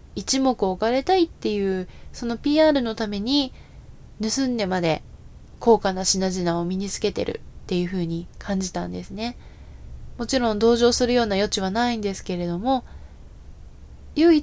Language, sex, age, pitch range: Japanese, female, 20-39, 175-230 Hz